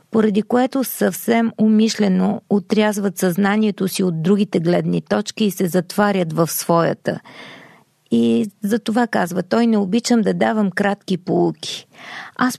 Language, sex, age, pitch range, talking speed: Bulgarian, female, 40-59, 190-230 Hz, 135 wpm